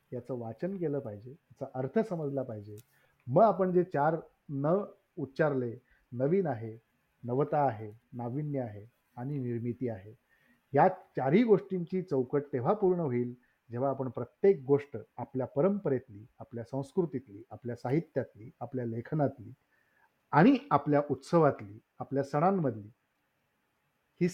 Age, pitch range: 50-69, 125-170 Hz